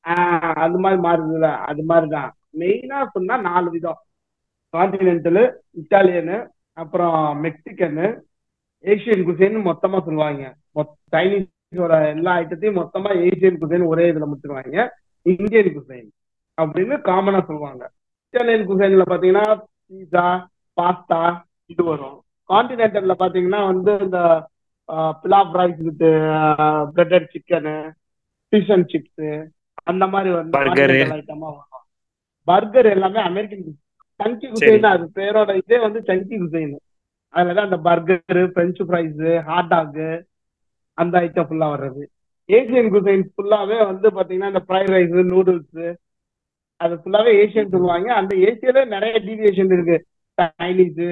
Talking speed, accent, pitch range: 80 wpm, native, 160-195 Hz